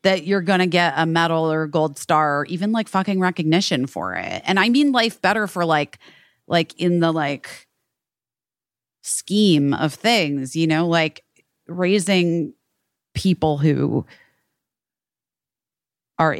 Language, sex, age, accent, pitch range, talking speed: English, female, 30-49, American, 135-175 Hz, 145 wpm